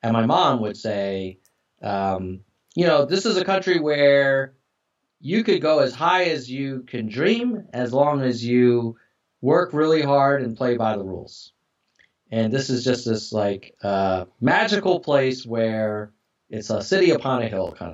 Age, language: 30-49, English